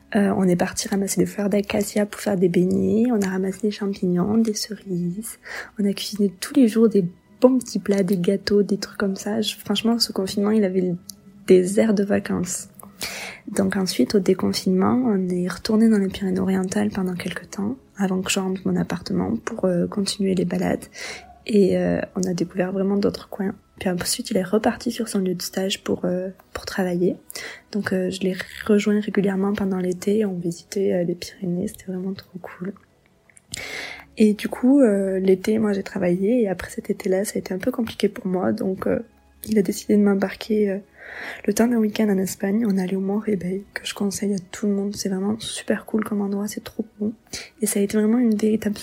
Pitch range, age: 190-215 Hz, 20-39